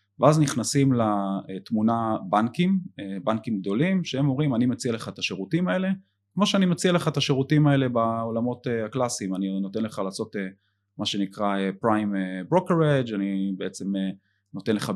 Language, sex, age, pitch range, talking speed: Hebrew, male, 30-49, 100-125 Hz, 140 wpm